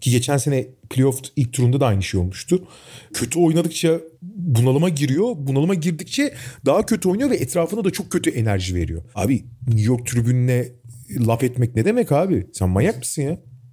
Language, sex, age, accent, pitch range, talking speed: Turkish, male, 40-59, native, 115-180 Hz, 170 wpm